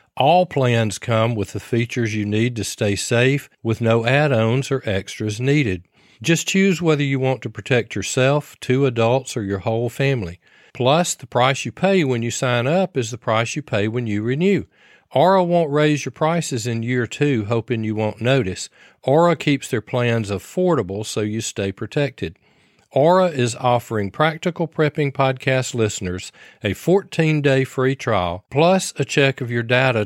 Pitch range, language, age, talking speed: 110-150 Hz, English, 40-59, 170 wpm